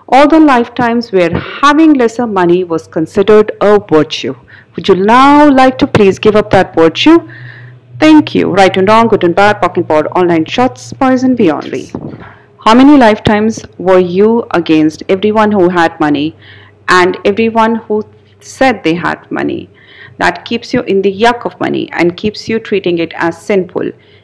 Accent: Indian